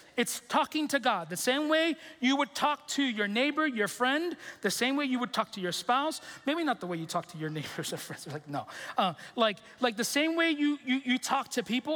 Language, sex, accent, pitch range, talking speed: English, male, American, 215-290 Hz, 250 wpm